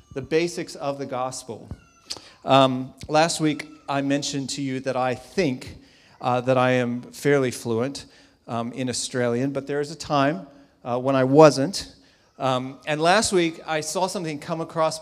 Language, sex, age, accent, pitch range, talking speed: English, male, 40-59, American, 125-150 Hz, 170 wpm